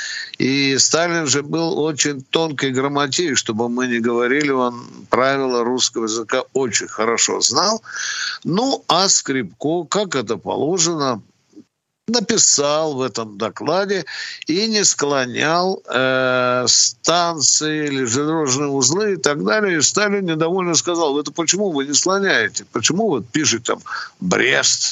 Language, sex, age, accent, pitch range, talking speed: Russian, male, 60-79, native, 125-170 Hz, 130 wpm